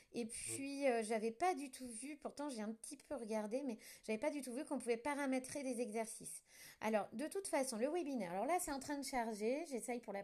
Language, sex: French, female